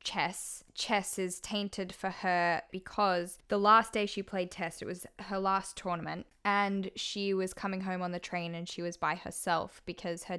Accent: Australian